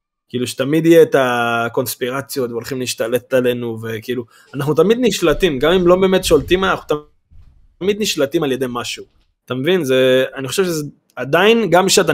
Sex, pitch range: male, 120-180 Hz